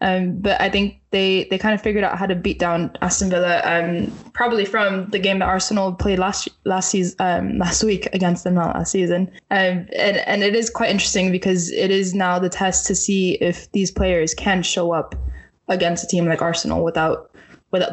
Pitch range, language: 180-215 Hz, English